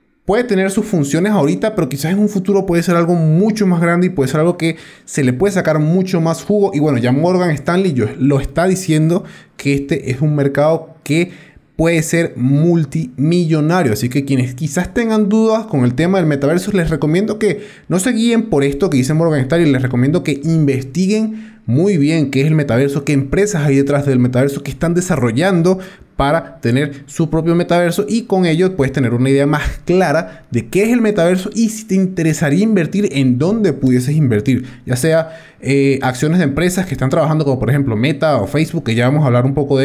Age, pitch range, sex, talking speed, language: 20-39, 140-180 Hz, male, 210 wpm, Spanish